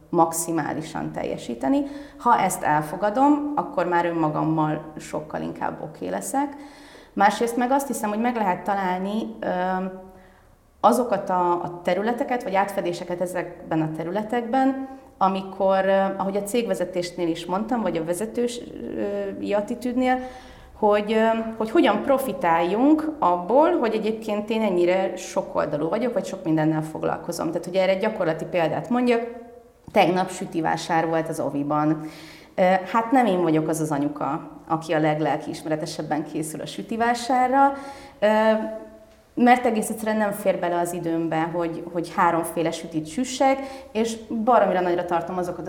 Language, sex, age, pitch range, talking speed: Hungarian, female, 30-49, 170-235 Hz, 130 wpm